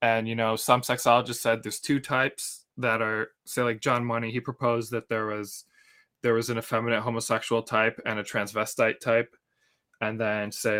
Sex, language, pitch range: male, English, 115-125 Hz